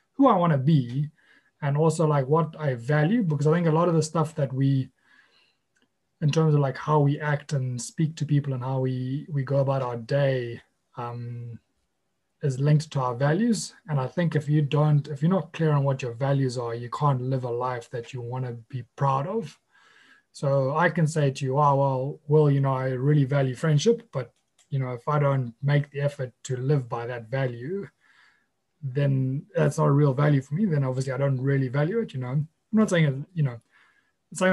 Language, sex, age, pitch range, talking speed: English, male, 20-39, 130-155 Hz, 215 wpm